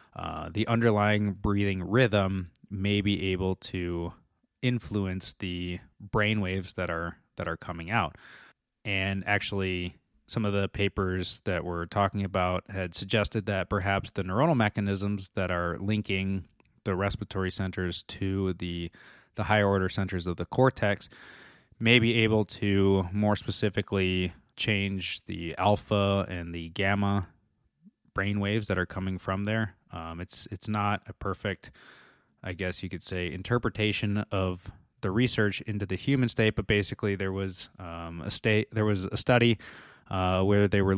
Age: 20-39